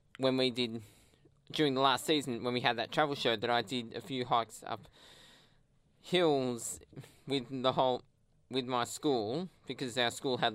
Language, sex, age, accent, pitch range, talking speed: English, male, 20-39, Australian, 110-140 Hz, 175 wpm